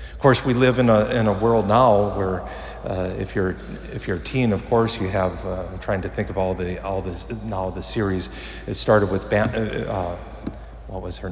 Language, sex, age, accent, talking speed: English, male, 50-69, American, 230 wpm